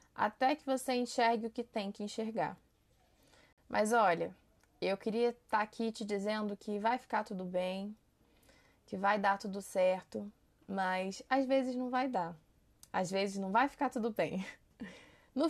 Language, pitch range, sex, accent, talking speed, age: Portuguese, 195-245 Hz, female, Brazilian, 160 wpm, 20-39